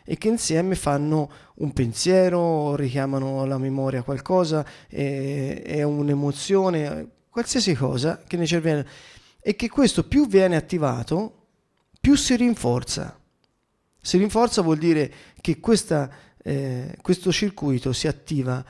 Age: 30-49